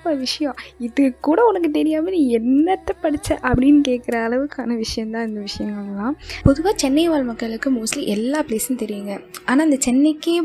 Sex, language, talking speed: female, Tamil, 155 wpm